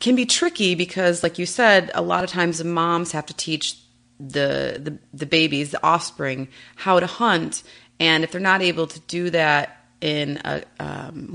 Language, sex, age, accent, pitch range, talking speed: English, female, 30-49, American, 145-185 Hz, 190 wpm